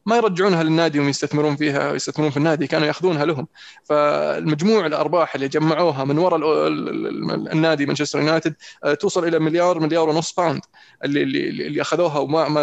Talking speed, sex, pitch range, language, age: 145 wpm, male, 145-170 Hz, Arabic, 20-39